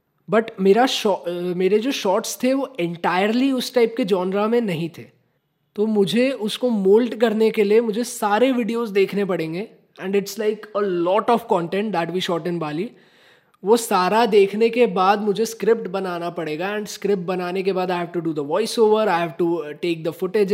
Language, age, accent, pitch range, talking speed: Hindi, 20-39, native, 165-215 Hz, 195 wpm